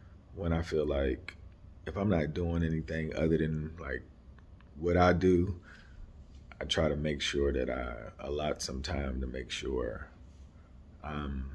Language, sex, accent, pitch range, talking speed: English, male, American, 75-90 Hz, 150 wpm